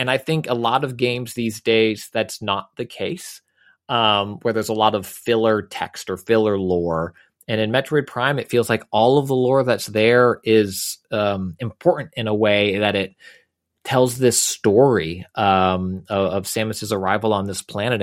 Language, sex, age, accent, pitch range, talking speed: English, male, 30-49, American, 105-145 Hz, 185 wpm